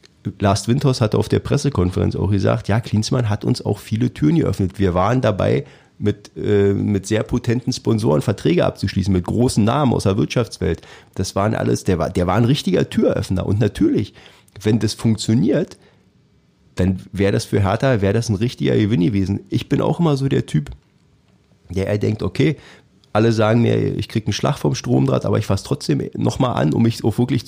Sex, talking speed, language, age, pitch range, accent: male, 190 wpm, German, 30-49, 100-130 Hz, German